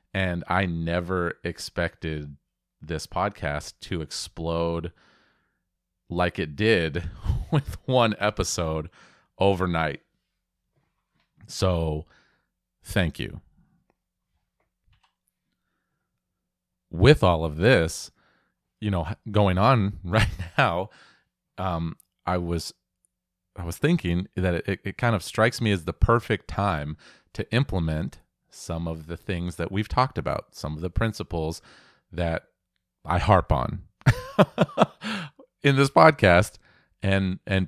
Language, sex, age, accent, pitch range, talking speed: English, male, 30-49, American, 80-105 Hz, 110 wpm